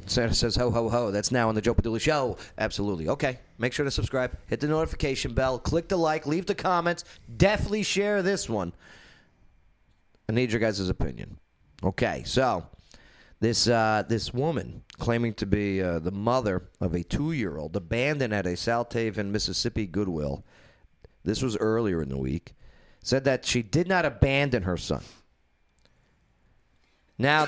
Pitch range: 110-150 Hz